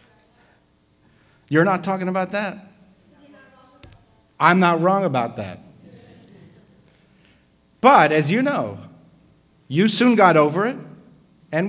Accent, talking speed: American, 105 wpm